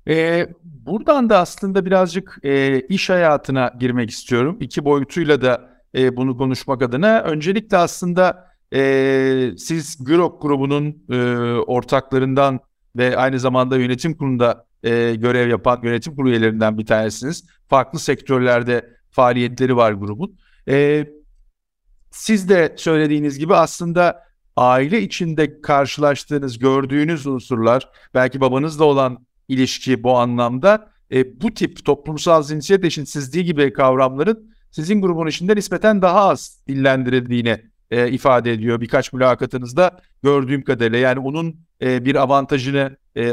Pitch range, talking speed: 130-165 Hz, 120 wpm